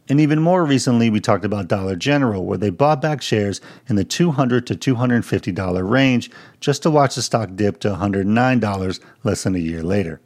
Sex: male